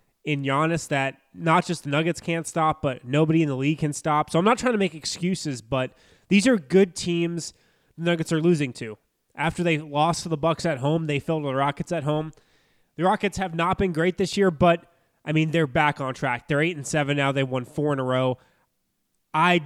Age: 20-39